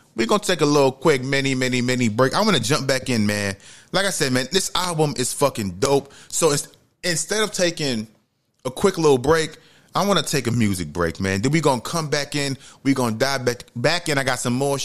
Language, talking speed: English, 250 wpm